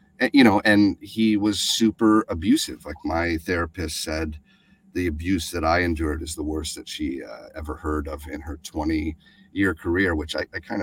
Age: 40-59